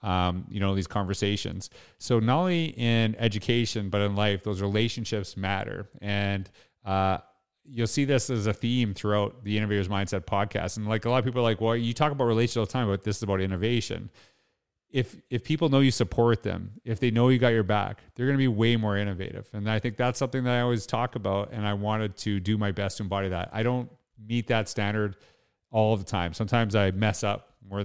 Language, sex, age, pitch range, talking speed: English, male, 30-49, 100-120 Hz, 225 wpm